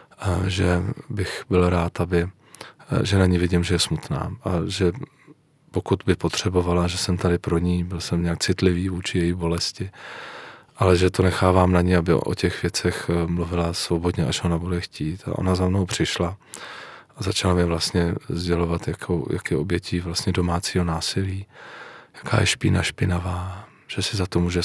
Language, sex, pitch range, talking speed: Czech, male, 85-95 Hz, 175 wpm